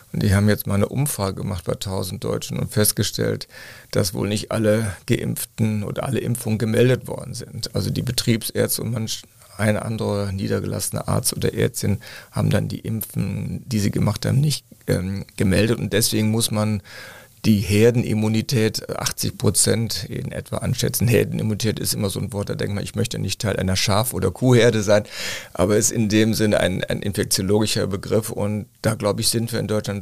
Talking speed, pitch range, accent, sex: 180 wpm, 100-115 Hz, German, male